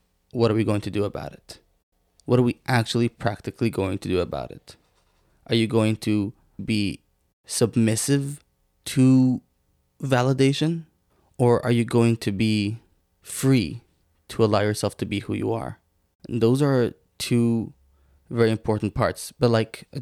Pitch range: 100-120 Hz